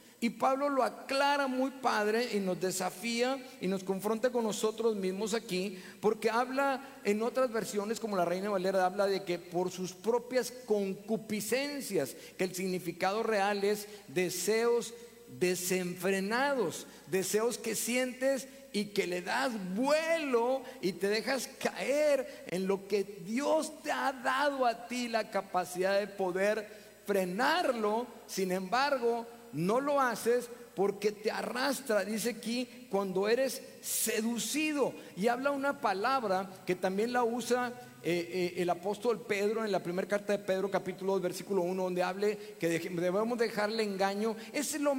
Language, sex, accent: Spanish, male, Mexican